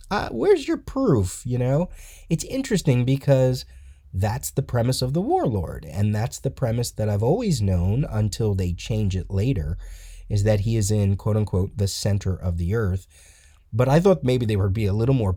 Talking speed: 190 wpm